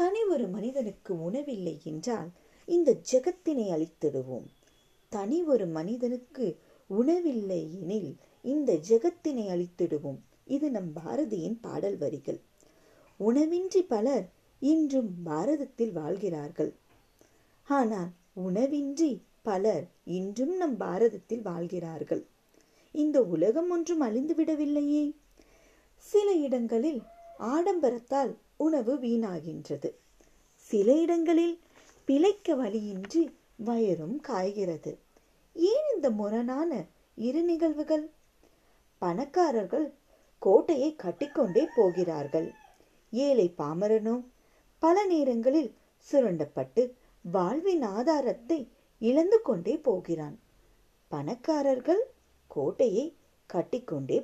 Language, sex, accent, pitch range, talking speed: Tamil, female, native, 185-315 Hz, 70 wpm